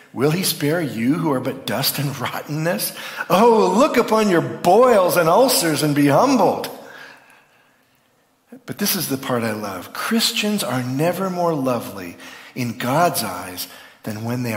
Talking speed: 155 wpm